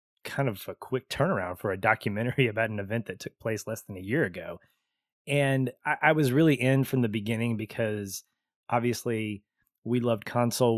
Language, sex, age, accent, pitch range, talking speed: English, male, 20-39, American, 105-125 Hz, 185 wpm